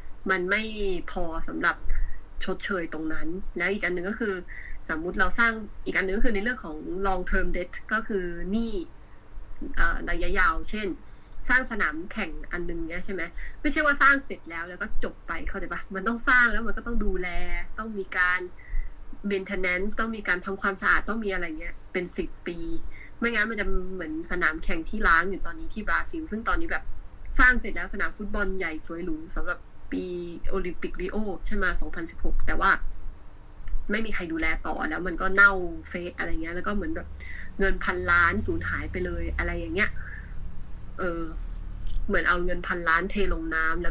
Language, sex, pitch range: Thai, female, 165-205 Hz